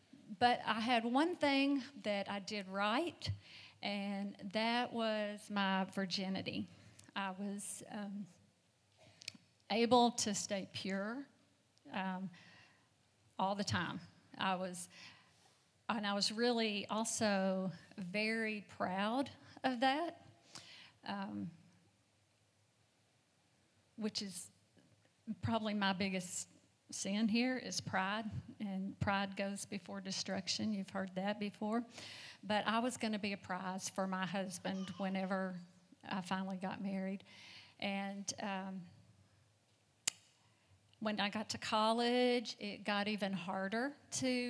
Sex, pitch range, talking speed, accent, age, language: female, 185-220 Hz, 110 wpm, American, 50-69, English